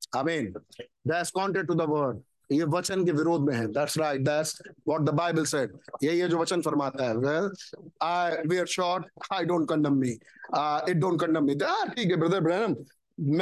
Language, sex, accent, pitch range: Hindi, male, native, 150-190 Hz